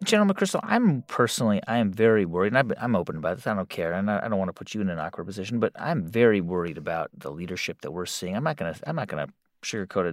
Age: 30-49